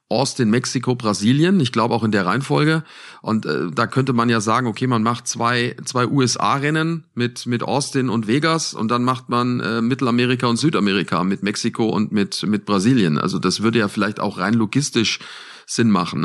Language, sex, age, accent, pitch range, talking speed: German, male, 40-59, German, 110-140 Hz, 190 wpm